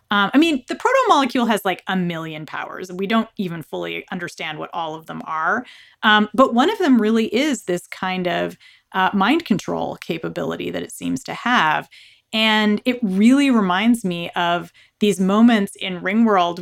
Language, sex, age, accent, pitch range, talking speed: English, female, 30-49, American, 180-225 Hz, 180 wpm